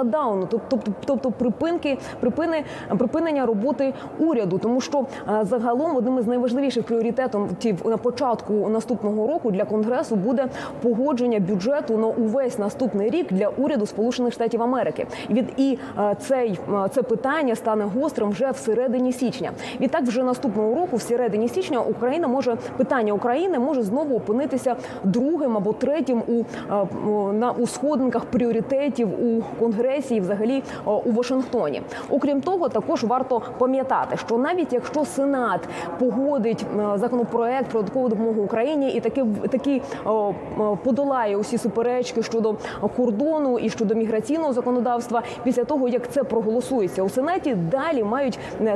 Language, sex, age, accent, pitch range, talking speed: Ukrainian, female, 20-39, native, 220-265 Hz, 135 wpm